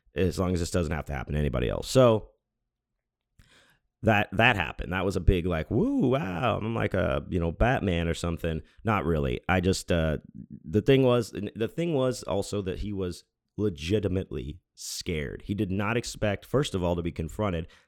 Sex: male